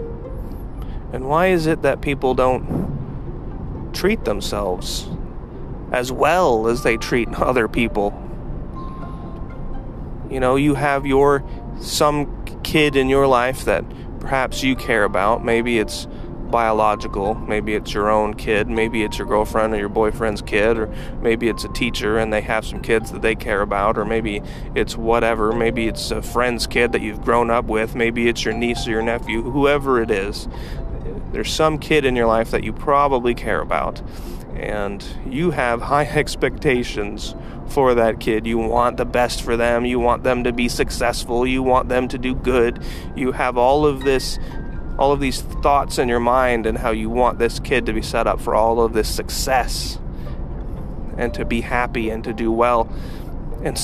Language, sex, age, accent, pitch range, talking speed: English, male, 30-49, American, 110-130 Hz, 175 wpm